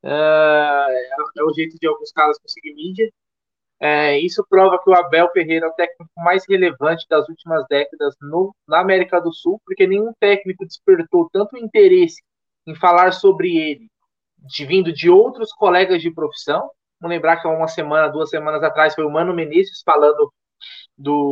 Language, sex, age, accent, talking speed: Portuguese, male, 20-39, Brazilian, 170 wpm